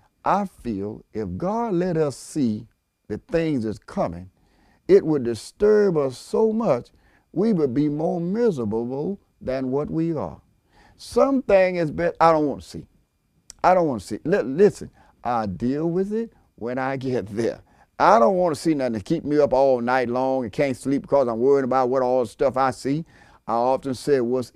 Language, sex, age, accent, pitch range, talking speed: English, male, 50-69, American, 115-190 Hz, 190 wpm